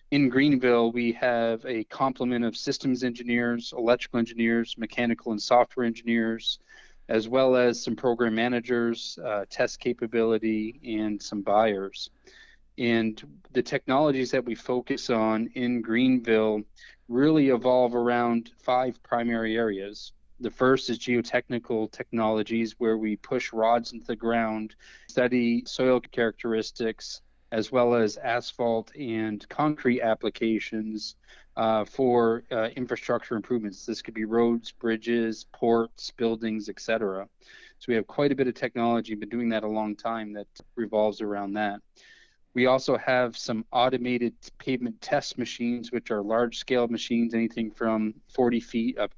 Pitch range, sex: 110-125 Hz, male